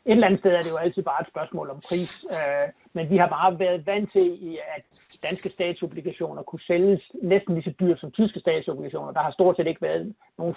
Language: Danish